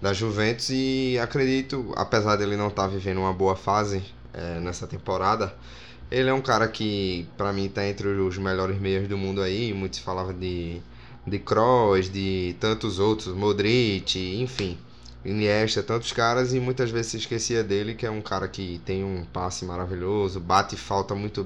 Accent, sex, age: Brazilian, male, 10-29